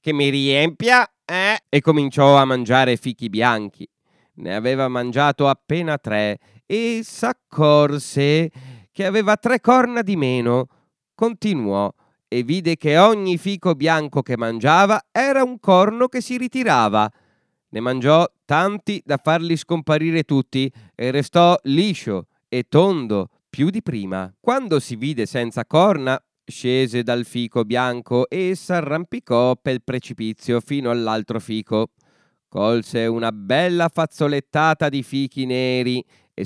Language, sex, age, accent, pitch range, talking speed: Italian, male, 30-49, native, 120-185 Hz, 125 wpm